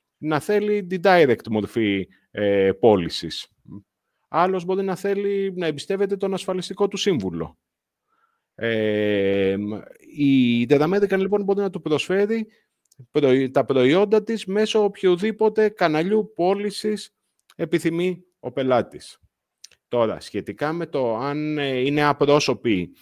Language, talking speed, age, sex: Greek, 110 wpm, 30-49, male